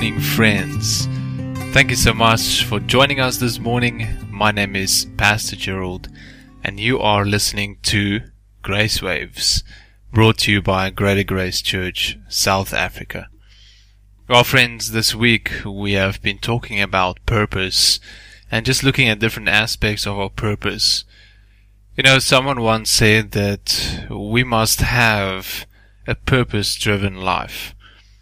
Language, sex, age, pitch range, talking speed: English, male, 20-39, 100-115 Hz, 130 wpm